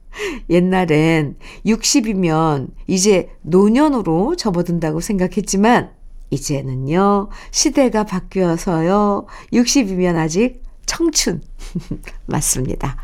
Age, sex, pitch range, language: 50-69, female, 170-245 Hz, Korean